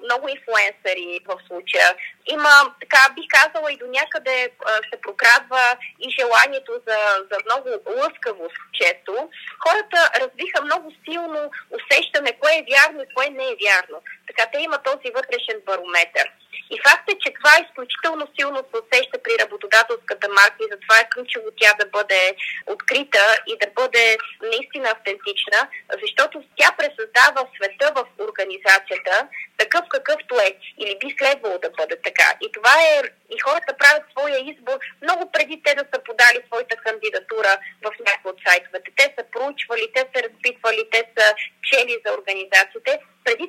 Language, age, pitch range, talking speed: Bulgarian, 20-39, 220-315 Hz, 155 wpm